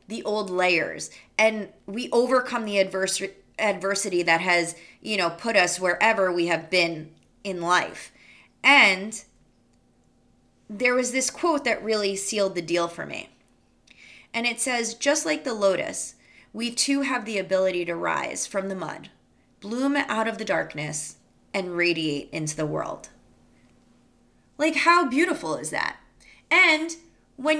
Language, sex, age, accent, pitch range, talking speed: English, female, 20-39, American, 185-245 Hz, 145 wpm